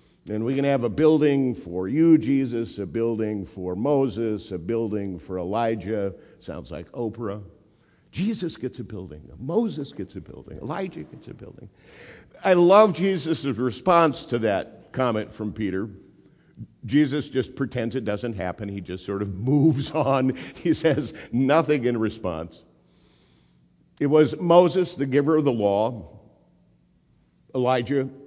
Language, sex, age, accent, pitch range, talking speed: English, male, 50-69, American, 100-145 Hz, 140 wpm